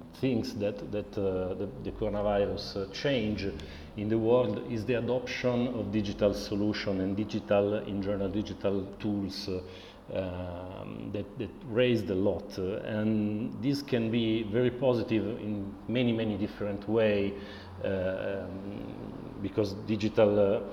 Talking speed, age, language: 125 wpm, 40-59, English